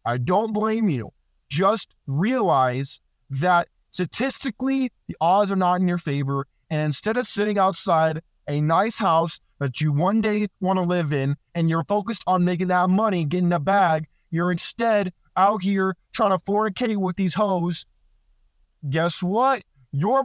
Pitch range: 150-205 Hz